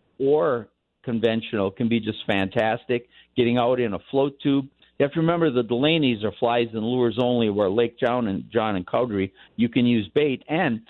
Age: 50-69